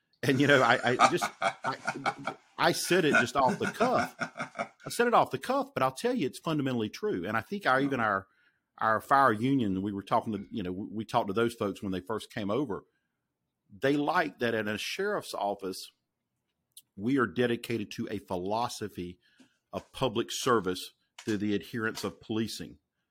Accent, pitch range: American, 105-135 Hz